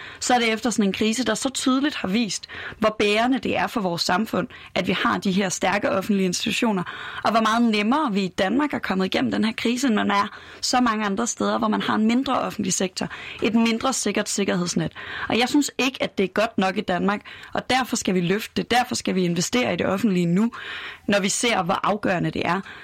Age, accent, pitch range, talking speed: 30-49, native, 190-245 Hz, 235 wpm